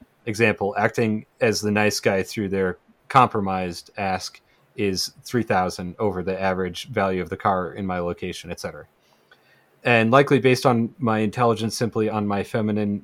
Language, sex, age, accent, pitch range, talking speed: English, male, 30-49, American, 100-120 Hz, 150 wpm